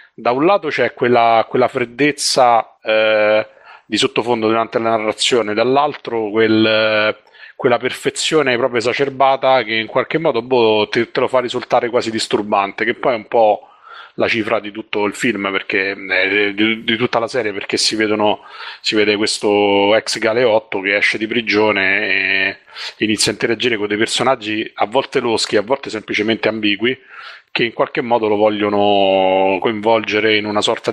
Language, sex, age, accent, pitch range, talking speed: Italian, male, 30-49, native, 100-115 Hz, 165 wpm